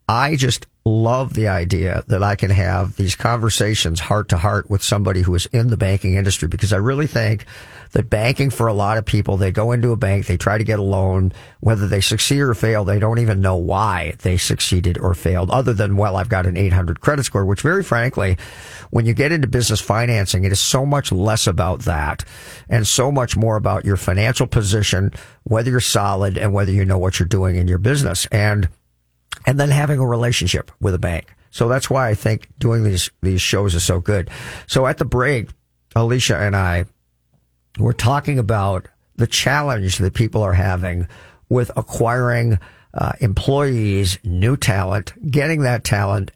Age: 50-69